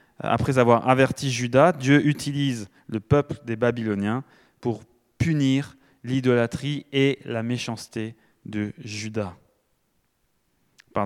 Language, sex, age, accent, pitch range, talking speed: French, male, 20-39, French, 115-145 Hz, 105 wpm